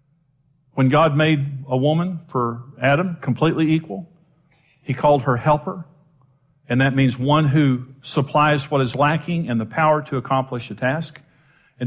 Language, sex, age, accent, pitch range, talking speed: English, male, 50-69, American, 130-160 Hz, 150 wpm